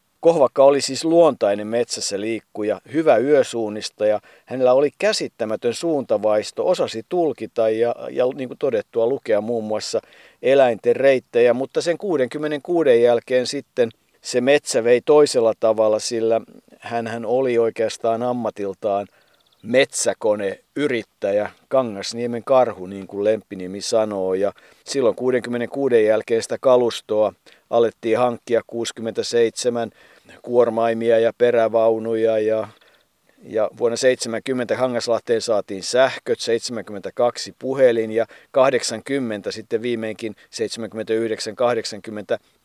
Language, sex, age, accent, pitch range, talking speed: Finnish, male, 50-69, native, 110-130 Hz, 100 wpm